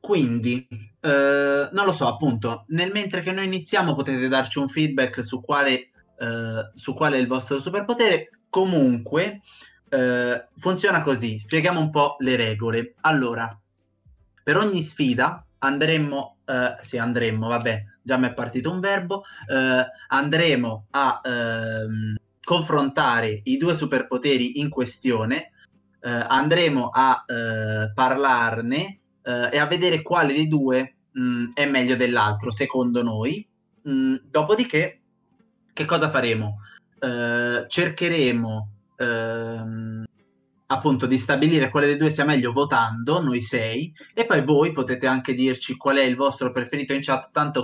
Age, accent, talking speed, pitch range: 20-39, native, 135 wpm, 120-150 Hz